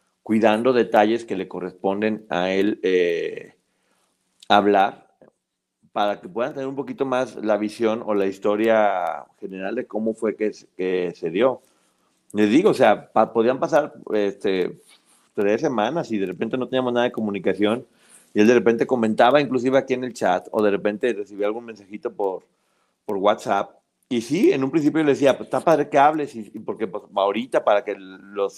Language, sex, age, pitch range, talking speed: Spanish, male, 40-59, 105-140 Hz, 180 wpm